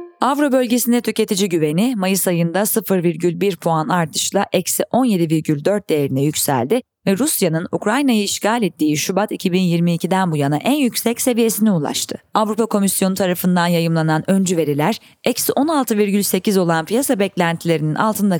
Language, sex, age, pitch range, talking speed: Turkish, female, 30-49, 175-240 Hz, 125 wpm